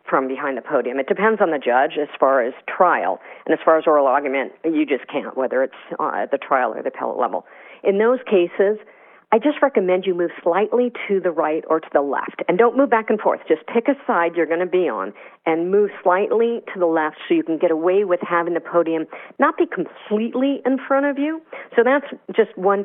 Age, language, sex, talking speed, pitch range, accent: 50-69, English, female, 230 wpm, 150-200 Hz, American